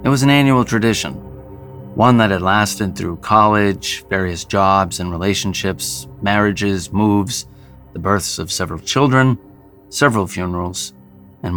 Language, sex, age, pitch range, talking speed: English, male, 30-49, 95-105 Hz, 130 wpm